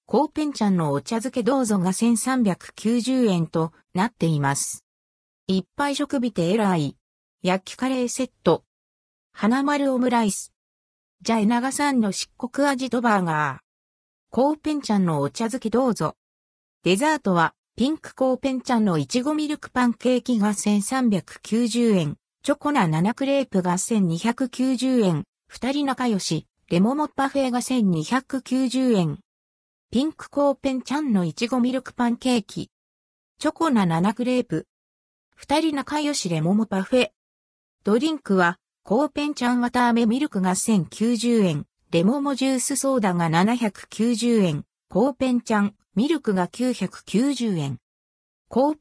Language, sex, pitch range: Japanese, female, 175-260 Hz